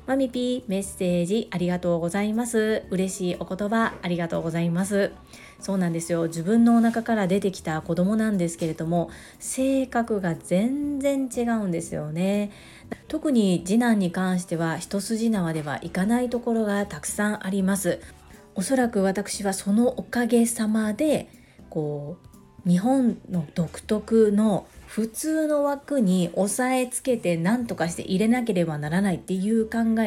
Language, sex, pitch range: Japanese, female, 170-230 Hz